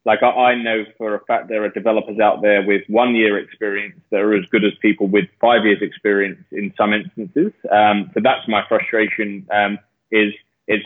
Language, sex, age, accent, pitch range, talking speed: English, male, 20-39, British, 100-110 Hz, 195 wpm